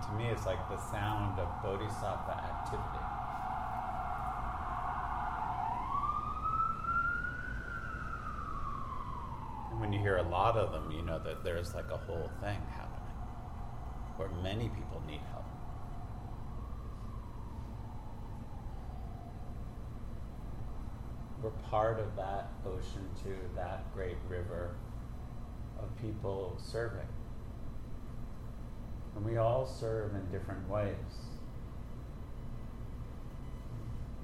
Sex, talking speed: male, 85 wpm